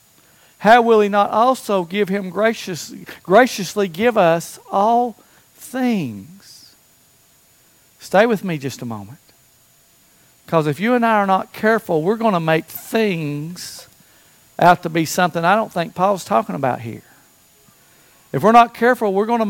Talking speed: 155 wpm